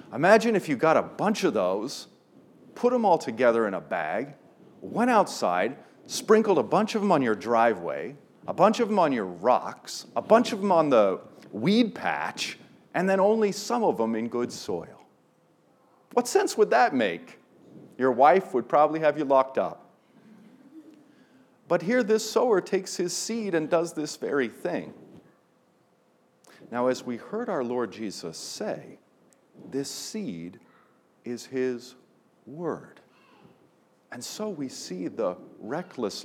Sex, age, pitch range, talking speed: male, 40-59, 135-220 Hz, 155 wpm